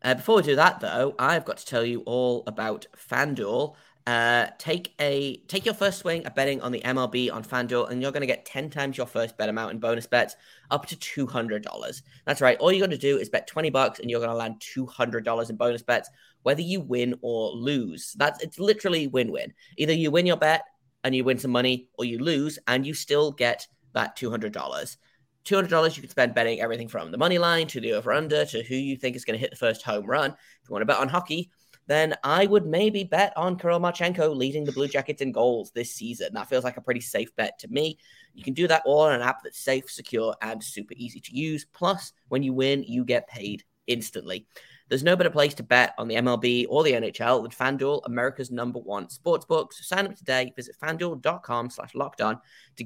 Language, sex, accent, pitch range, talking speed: English, male, British, 120-155 Hz, 230 wpm